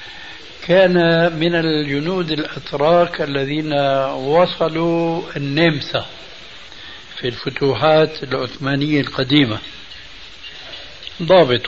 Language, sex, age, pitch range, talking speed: Arabic, male, 60-79, 140-175 Hz, 60 wpm